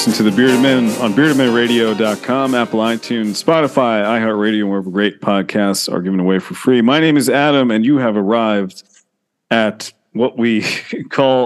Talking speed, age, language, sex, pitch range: 160 wpm, 30-49, English, male, 100-130 Hz